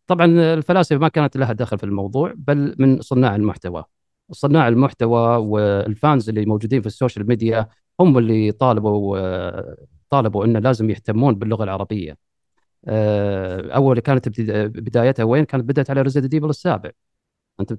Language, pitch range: Arabic, 110-160 Hz